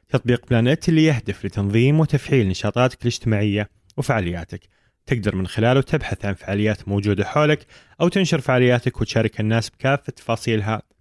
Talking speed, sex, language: 130 wpm, male, Arabic